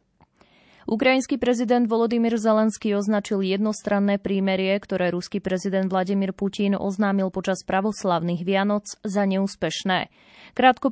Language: Slovak